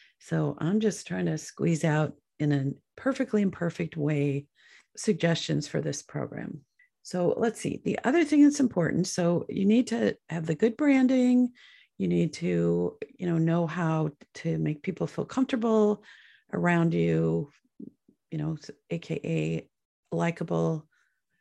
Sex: female